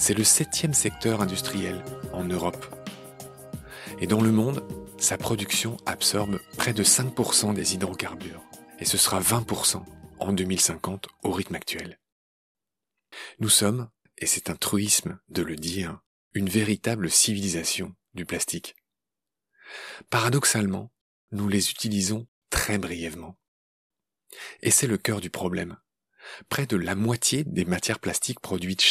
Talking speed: 130 wpm